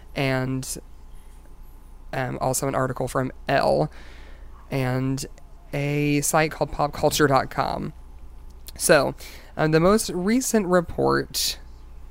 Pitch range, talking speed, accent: 130-155 Hz, 90 wpm, American